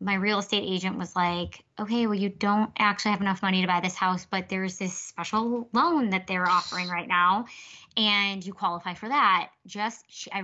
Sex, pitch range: female, 175-205 Hz